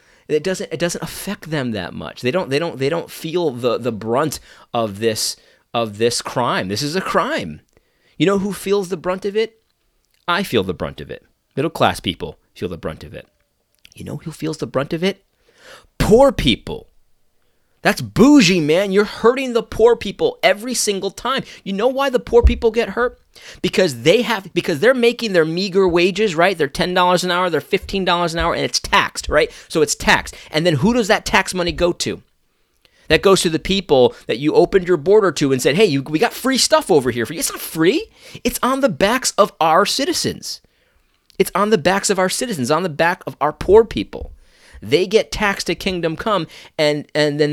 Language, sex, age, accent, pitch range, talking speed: English, male, 30-49, American, 155-220 Hz, 215 wpm